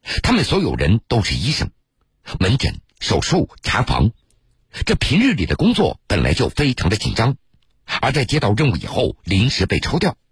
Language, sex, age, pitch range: Chinese, male, 50-69, 95-140 Hz